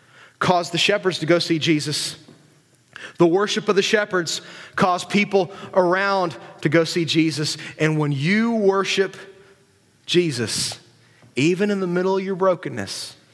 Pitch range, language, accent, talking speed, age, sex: 145-185 Hz, English, American, 140 wpm, 30-49, male